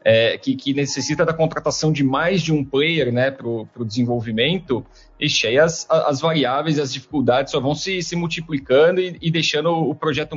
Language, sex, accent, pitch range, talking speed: Portuguese, male, Brazilian, 130-165 Hz, 185 wpm